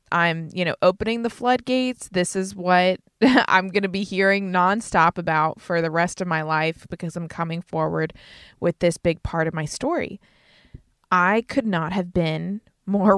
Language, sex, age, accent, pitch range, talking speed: English, female, 20-39, American, 175-220 Hz, 175 wpm